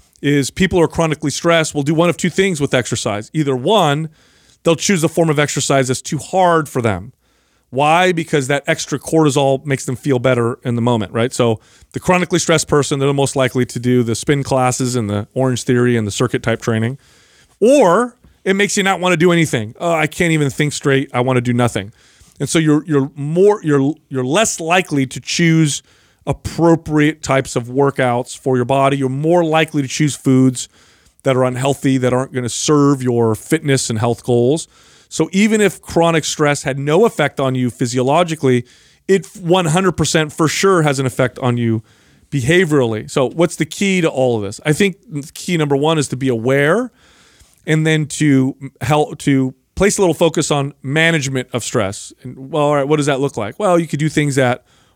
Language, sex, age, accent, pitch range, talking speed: English, male, 30-49, American, 130-160 Hz, 205 wpm